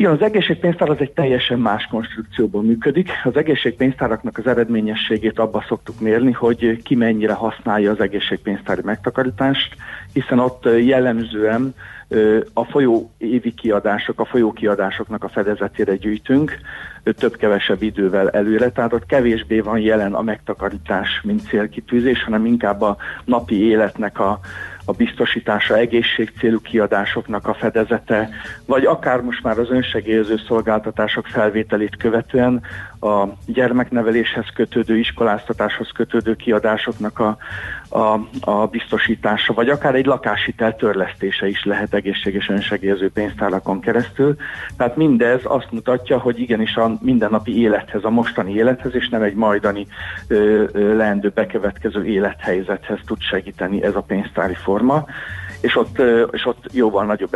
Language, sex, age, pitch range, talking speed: Hungarian, male, 50-69, 105-120 Hz, 125 wpm